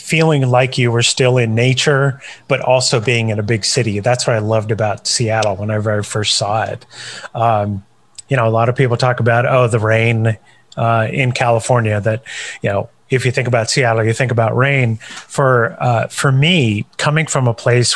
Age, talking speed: 30-49, 205 wpm